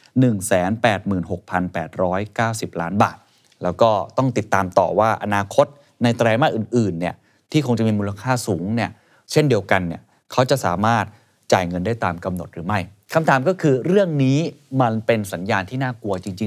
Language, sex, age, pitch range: Thai, male, 20-39, 95-130 Hz